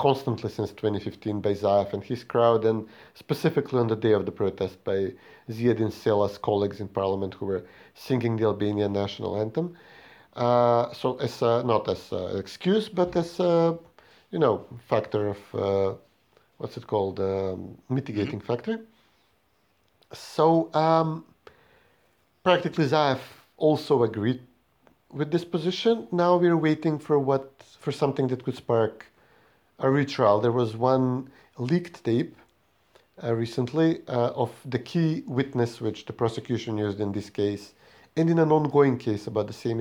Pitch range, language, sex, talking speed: 105-145 Hz, English, male, 150 wpm